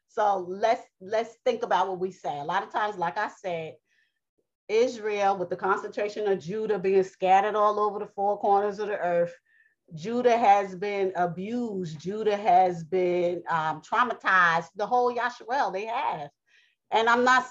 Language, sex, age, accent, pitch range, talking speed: English, female, 30-49, American, 190-245 Hz, 165 wpm